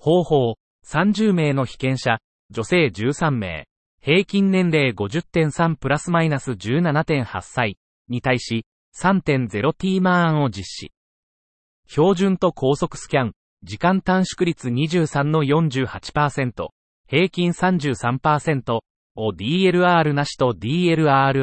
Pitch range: 115-165 Hz